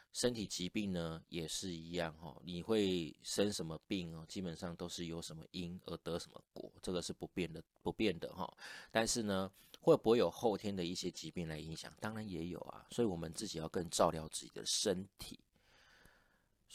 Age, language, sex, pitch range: 30-49, Chinese, male, 80-100 Hz